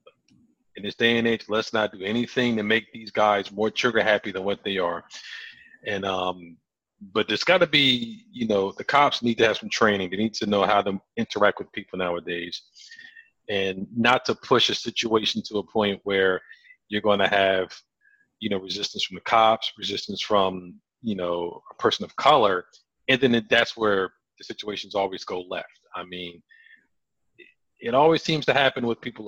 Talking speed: 190 wpm